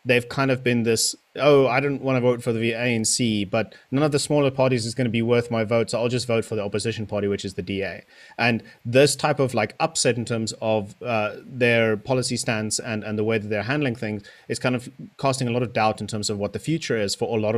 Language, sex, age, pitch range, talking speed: English, male, 30-49, 110-135 Hz, 265 wpm